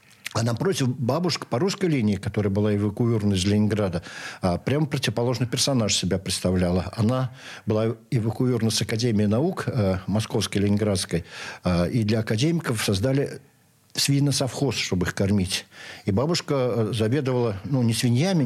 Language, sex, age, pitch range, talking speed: Russian, male, 60-79, 105-130 Hz, 125 wpm